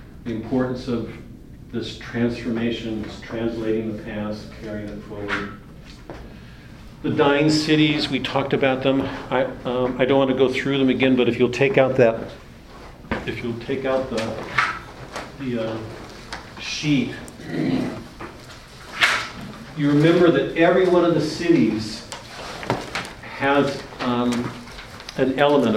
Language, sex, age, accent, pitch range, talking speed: English, male, 50-69, American, 115-135 Hz, 125 wpm